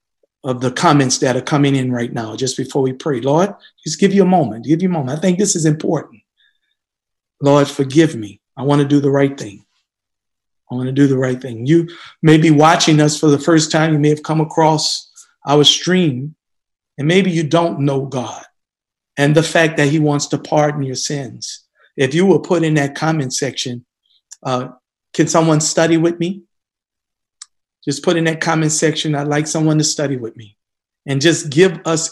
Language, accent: English, American